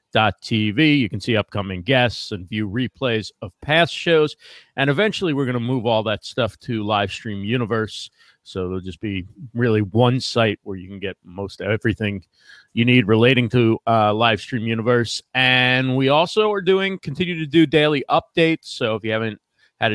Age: 40-59